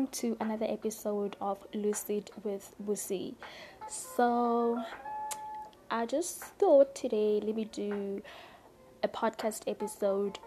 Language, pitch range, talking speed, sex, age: English, 195-235 Hz, 105 wpm, female, 10-29